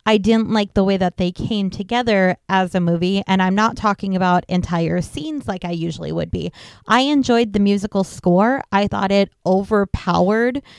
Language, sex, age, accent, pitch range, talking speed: English, female, 20-39, American, 185-225 Hz, 185 wpm